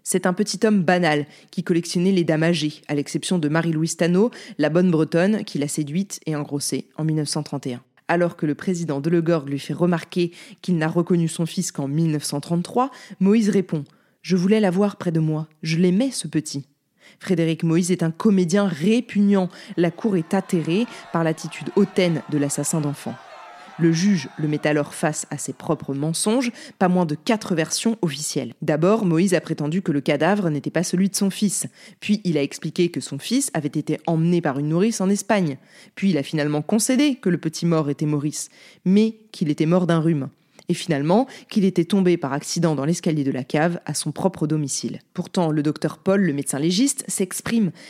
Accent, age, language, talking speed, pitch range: French, 20-39, French, 195 wpm, 155-195 Hz